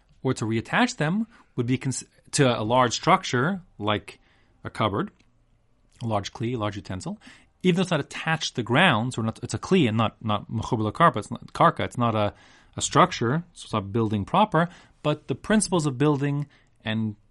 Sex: male